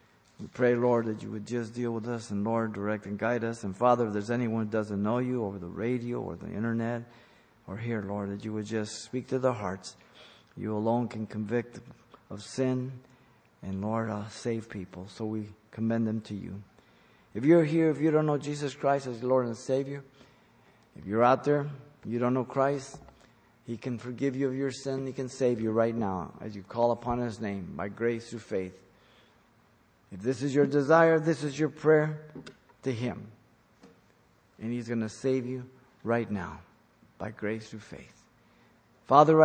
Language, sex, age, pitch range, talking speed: English, male, 50-69, 110-130 Hz, 195 wpm